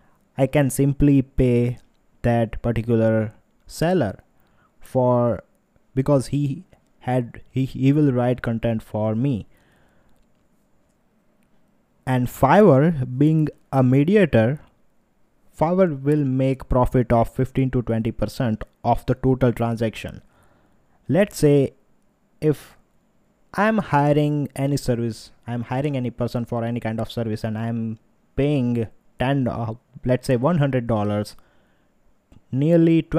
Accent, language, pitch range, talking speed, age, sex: Indian, English, 120-145 Hz, 110 wpm, 20-39, male